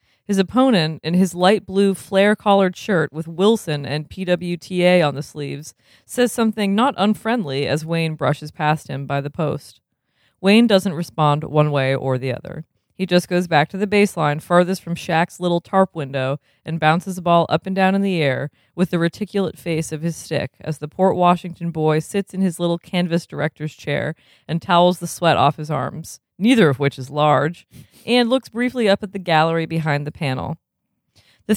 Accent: American